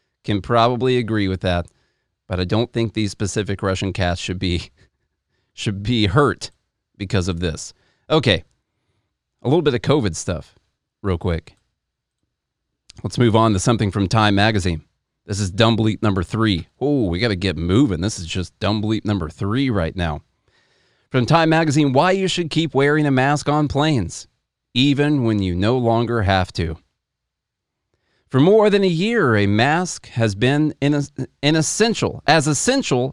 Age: 30-49